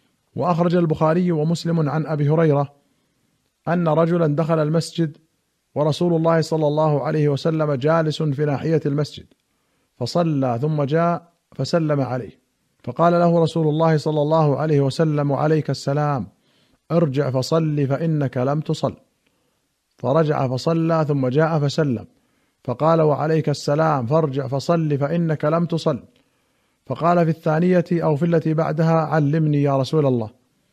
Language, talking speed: Arabic, 125 wpm